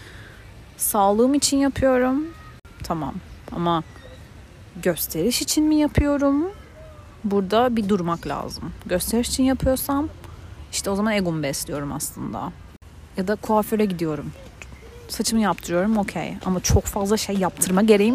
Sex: female